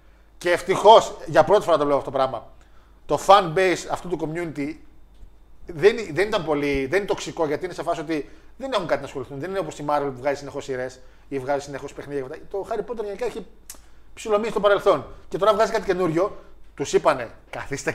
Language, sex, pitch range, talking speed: Greek, male, 155-215 Hz, 205 wpm